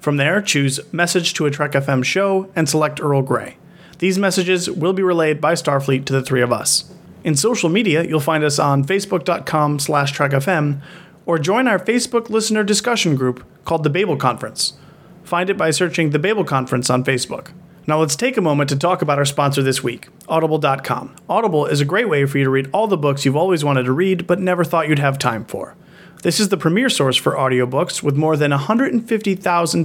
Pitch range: 140-185 Hz